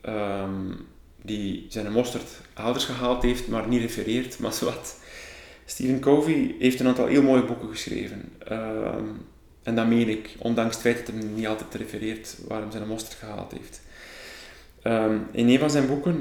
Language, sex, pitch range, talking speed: Dutch, male, 110-125 Hz, 165 wpm